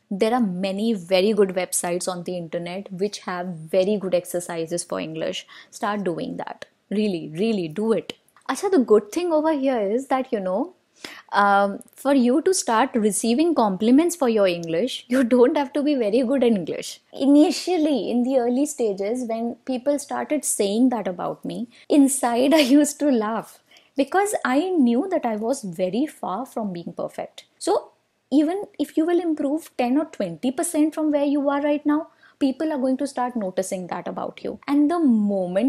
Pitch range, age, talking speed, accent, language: 200-285 Hz, 20-39, 180 wpm, native, Hindi